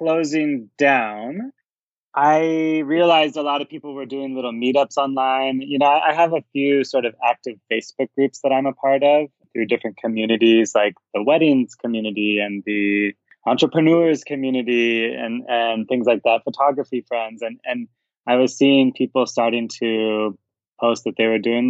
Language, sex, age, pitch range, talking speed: English, male, 20-39, 115-145 Hz, 165 wpm